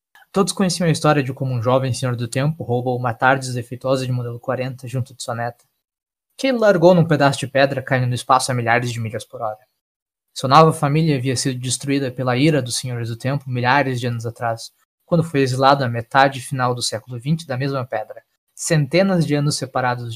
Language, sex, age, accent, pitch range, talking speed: Portuguese, male, 20-39, Brazilian, 125-150 Hz, 205 wpm